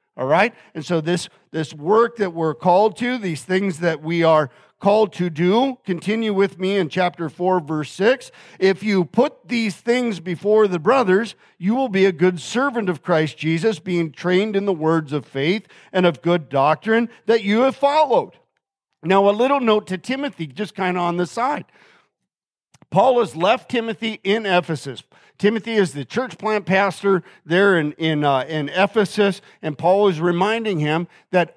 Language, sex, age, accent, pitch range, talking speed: English, male, 50-69, American, 175-225 Hz, 180 wpm